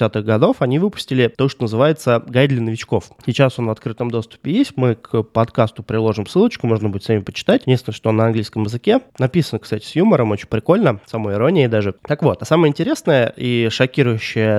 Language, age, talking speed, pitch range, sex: Russian, 20-39, 190 wpm, 110-135 Hz, male